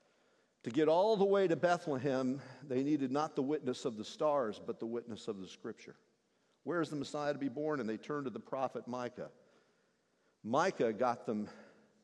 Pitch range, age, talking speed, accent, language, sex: 115-165 Hz, 50-69, 190 wpm, American, English, male